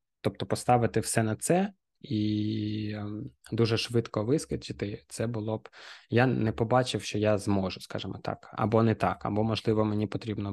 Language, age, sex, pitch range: Ukrainian, 20-39, male, 105-120 Hz